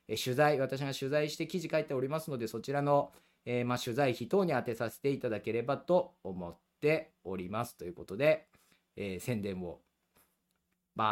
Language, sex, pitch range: Japanese, male, 100-160 Hz